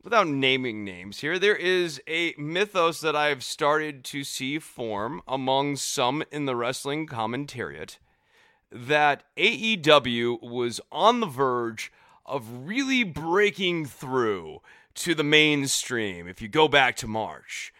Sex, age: male, 30-49